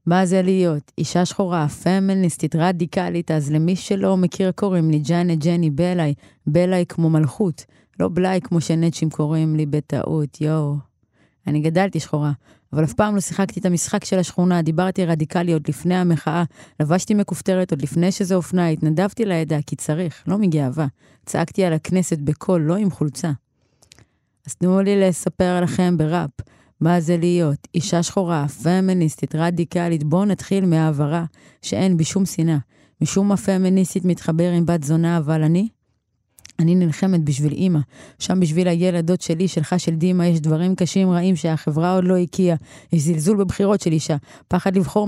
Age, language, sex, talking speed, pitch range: 20-39, Hebrew, female, 155 wpm, 155-185 Hz